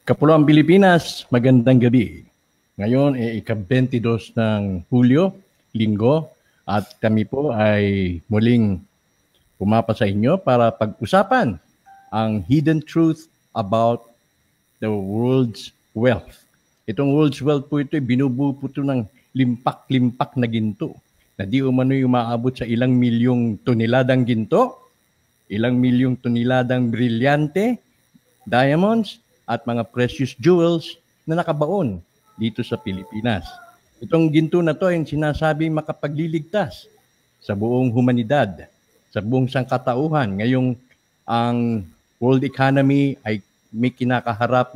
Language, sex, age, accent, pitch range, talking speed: English, male, 50-69, Filipino, 115-145 Hz, 105 wpm